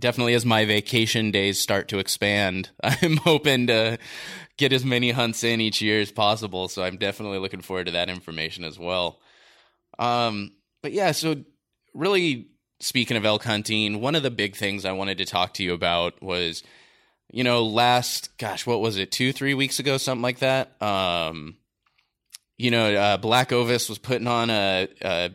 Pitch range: 100-120 Hz